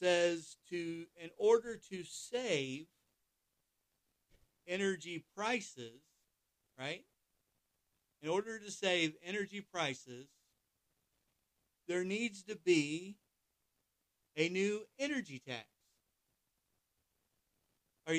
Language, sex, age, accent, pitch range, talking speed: English, male, 40-59, American, 135-185 Hz, 80 wpm